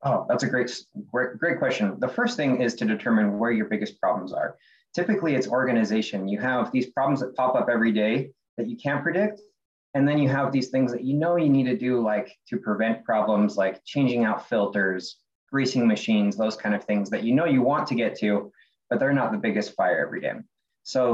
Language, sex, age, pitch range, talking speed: English, male, 20-39, 100-125 Hz, 220 wpm